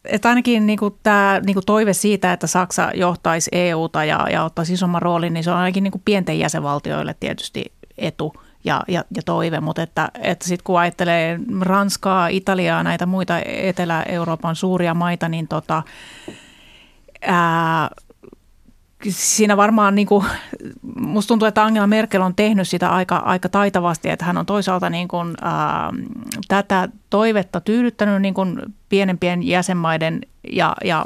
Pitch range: 165-200 Hz